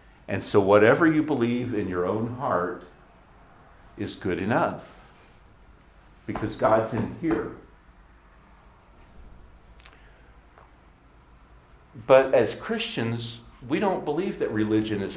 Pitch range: 90-115 Hz